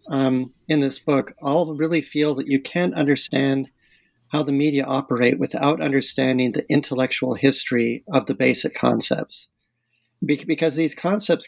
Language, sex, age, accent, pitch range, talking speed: English, male, 40-59, American, 130-155 Hz, 145 wpm